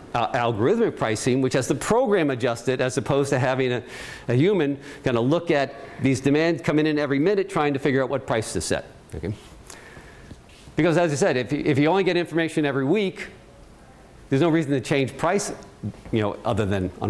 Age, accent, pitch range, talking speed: 50-69, American, 120-160 Hz, 205 wpm